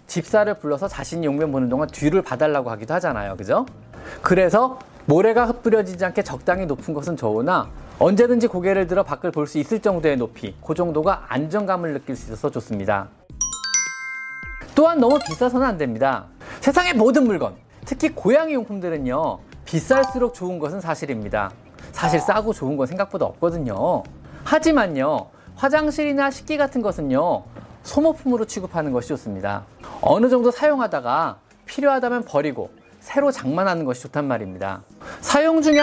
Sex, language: male, Korean